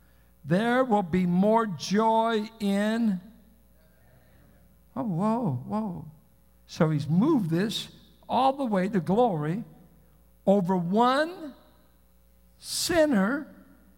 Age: 60-79